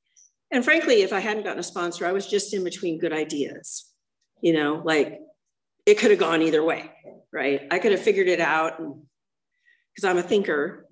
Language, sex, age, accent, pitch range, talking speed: English, female, 50-69, American, 185-275 Hz, 190 wpm